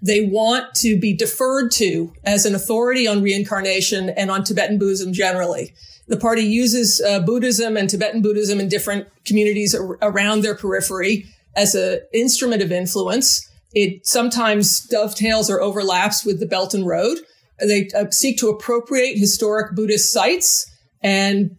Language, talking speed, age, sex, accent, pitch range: English, 155 wpm, 40-59, female, American, 195-220 Hz